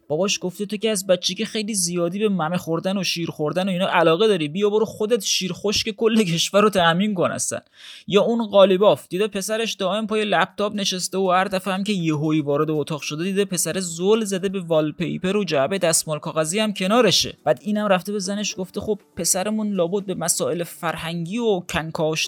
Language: Persian